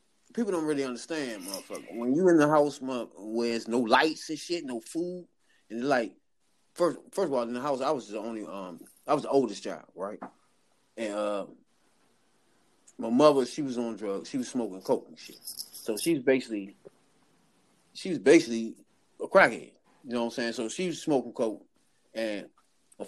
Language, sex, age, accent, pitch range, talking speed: English, male, 30-49, American, 125-160 Hz, 185 wpm